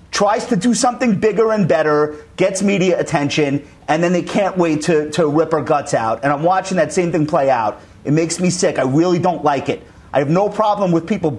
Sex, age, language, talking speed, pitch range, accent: male, 40-59, English, 230 wpm, 145-185 Hz, American